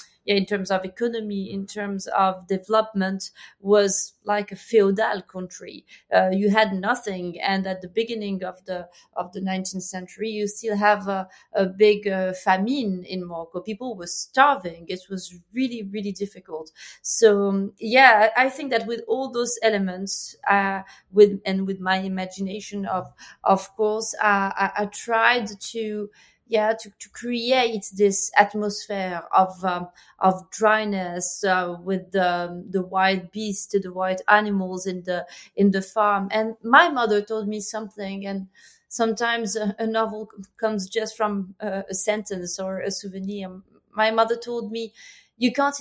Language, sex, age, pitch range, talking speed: English, female, 30-49, 190-220 Hz, 155 wpm